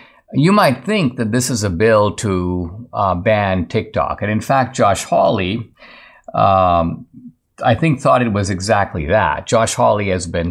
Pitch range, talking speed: 105-130 Hz, 165 wpm